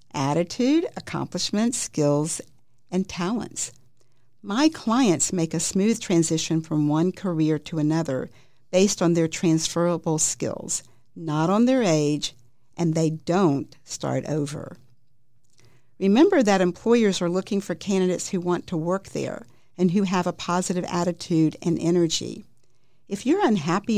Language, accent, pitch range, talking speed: English, American, 150-190 Hz, 135 wpm